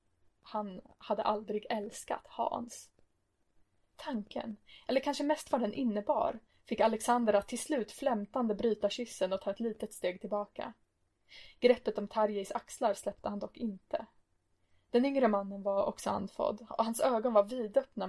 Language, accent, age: Swedish, native, 20-39